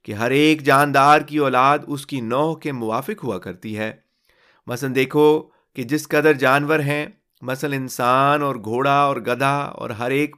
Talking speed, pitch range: 160 wpm, 115-150 Hz